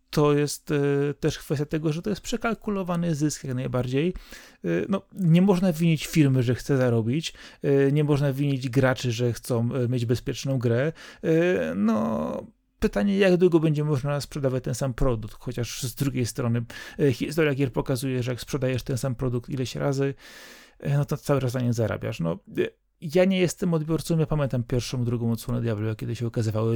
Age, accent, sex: 30-49, native, male